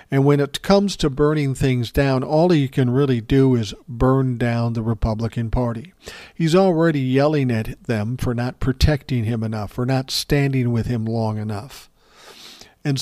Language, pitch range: English, 115-145 Hz